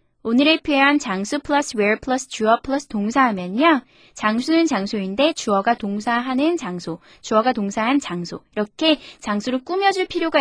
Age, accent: 20-39, native